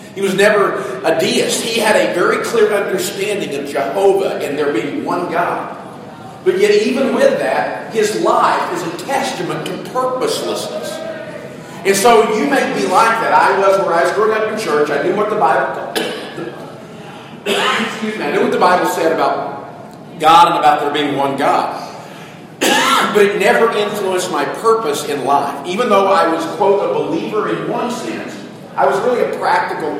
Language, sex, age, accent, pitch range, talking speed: English, male, 50-69, American, 155-225 Hz, 175 wpm